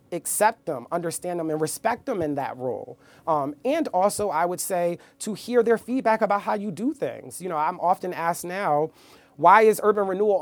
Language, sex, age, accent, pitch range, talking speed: English, male, 30-49, American, 155-200 Hz, 200 wpm